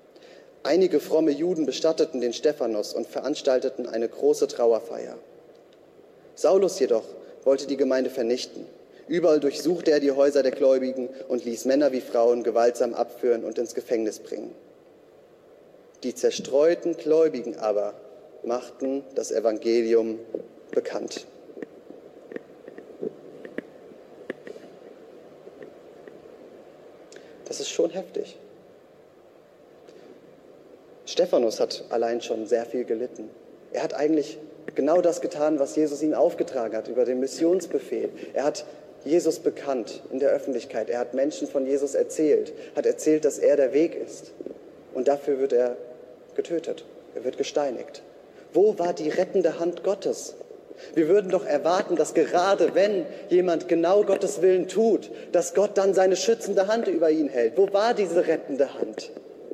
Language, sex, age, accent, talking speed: German, male, 30-49, German, 130 wpm